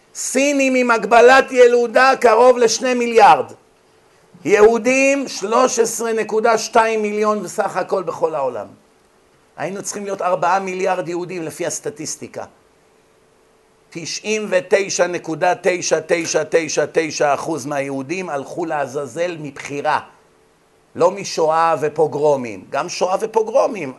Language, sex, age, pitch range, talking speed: Hebrew, male, 50-69, 175-245 Hz, 80 wpm